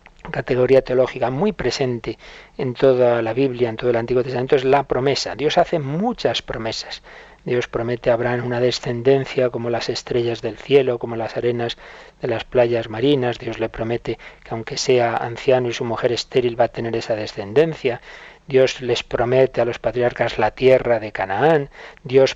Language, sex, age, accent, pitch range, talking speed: Spanish, male, 40-59, Spanish, 115-135 Hz, 175 wpm